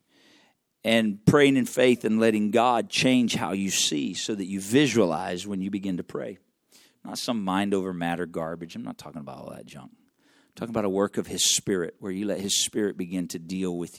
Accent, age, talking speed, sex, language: American, 50-69, 215 wpm, male, English